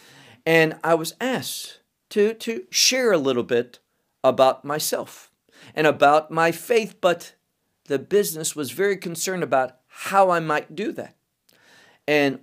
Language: English